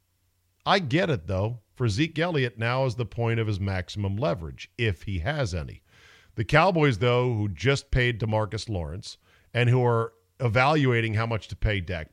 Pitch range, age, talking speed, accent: 95-130 Hz, 50-69, 180 wpm, American